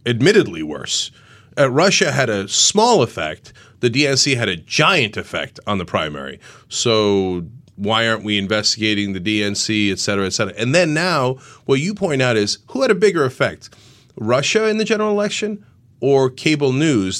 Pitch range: 110-160 Hz